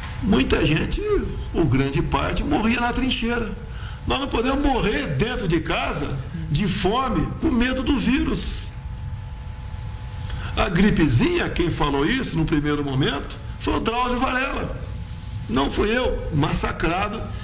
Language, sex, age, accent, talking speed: Portuguese, male, 60-79, Brazilian, 125 wpm